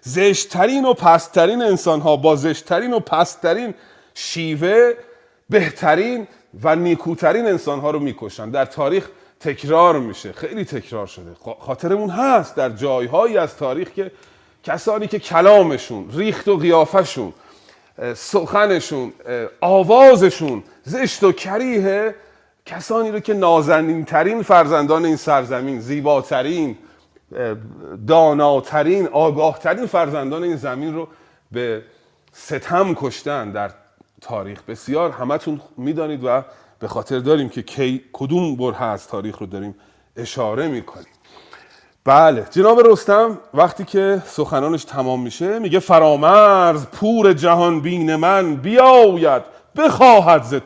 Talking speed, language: 115 wpm, Persian